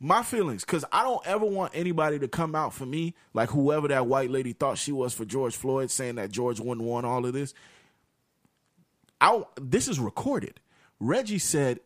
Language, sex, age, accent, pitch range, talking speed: English, male, 30-49, American, 135-215 Hz, 190 wpm